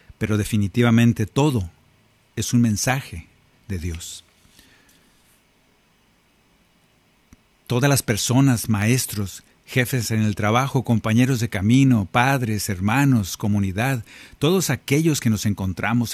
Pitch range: 105-125 Hz